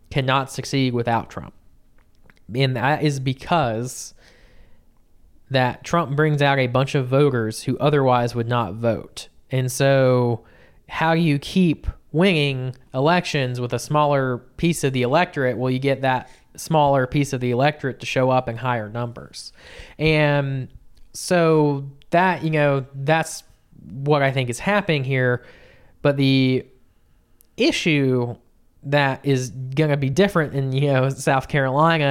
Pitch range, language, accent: 120-145 Hz, English, American